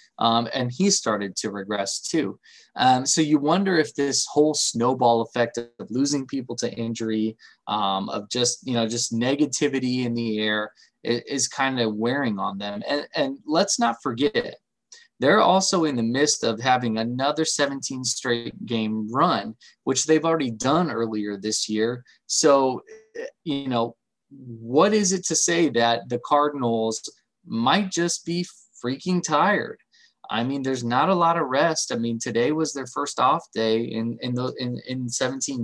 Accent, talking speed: American, 165 wpm